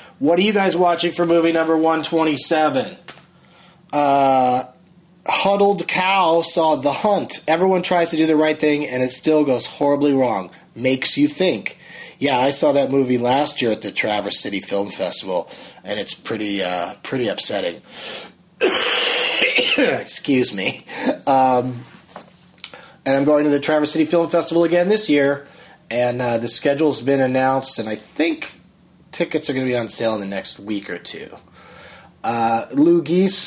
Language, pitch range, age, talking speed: English, 130-185 Hz, 30-49, 160 wpm